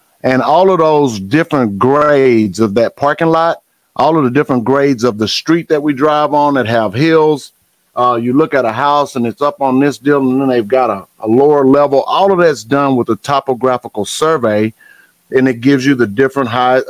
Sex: male